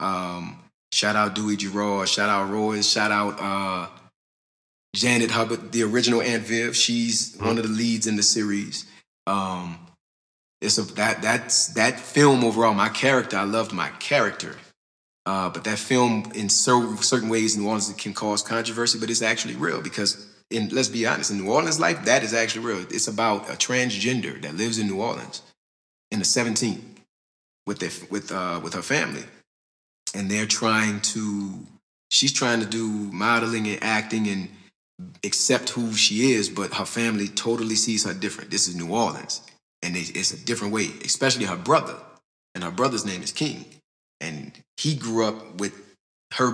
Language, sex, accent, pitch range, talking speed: English, male, American, 100-115 Hz, 175 wpm